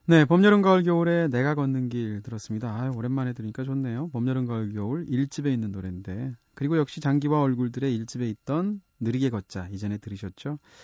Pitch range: 110-150 Hz